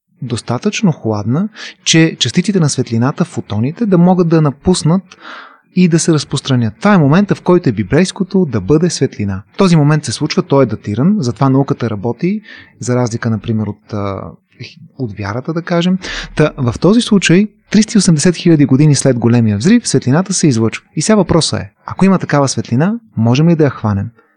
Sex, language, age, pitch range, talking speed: male, Bulgarian, 30-49, 120-175 Hz, 170 wpm